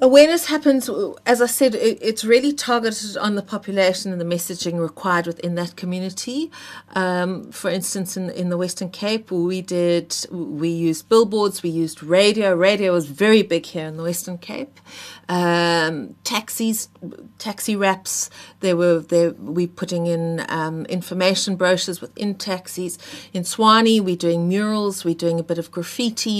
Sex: female